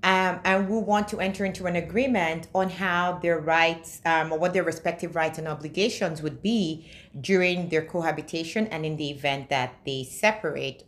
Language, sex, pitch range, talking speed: English, female, 145-190 Hz, 180 wpm